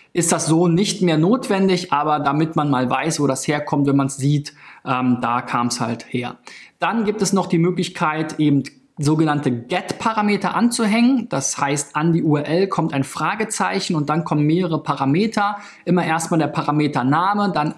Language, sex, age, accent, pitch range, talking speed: German, male, 20-39, German, 135-170 Hz, 175 wpm